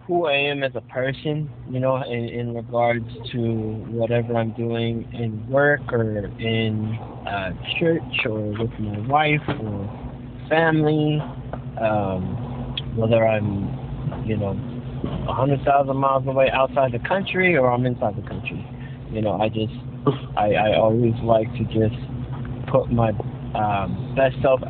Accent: American